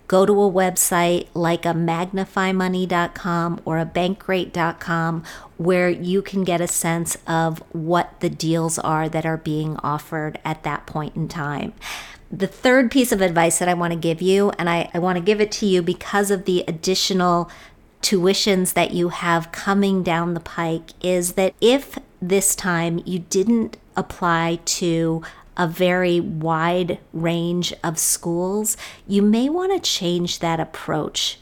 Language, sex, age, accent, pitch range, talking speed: English, female, 50-69, American, 170-190 Hz, 160 wpm